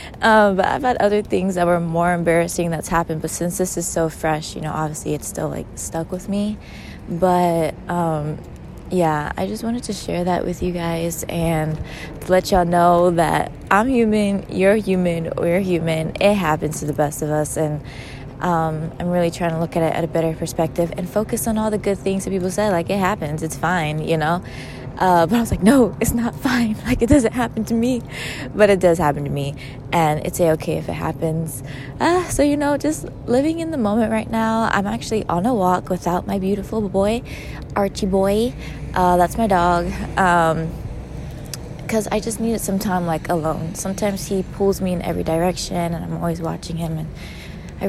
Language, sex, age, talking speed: English, female, 20-39, 205 wpm